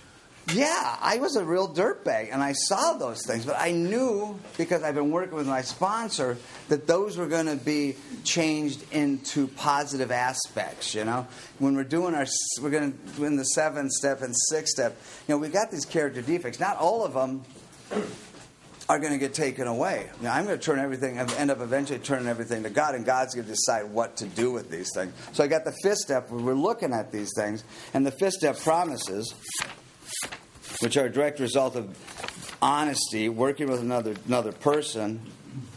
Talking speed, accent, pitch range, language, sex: 200 wpm, American, 120-145 Hz, English, male